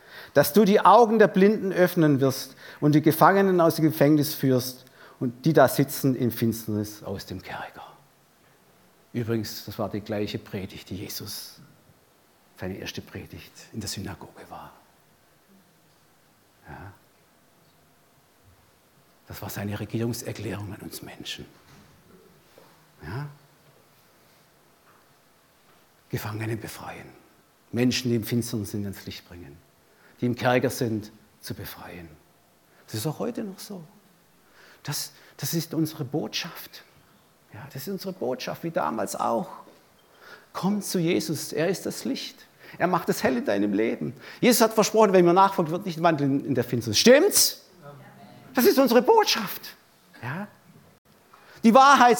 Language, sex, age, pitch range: German, male, 60-79, 115-185 Hz